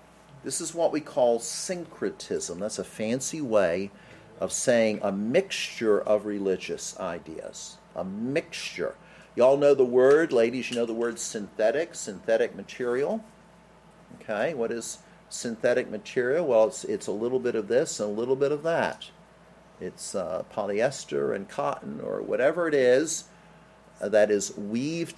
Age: 50-69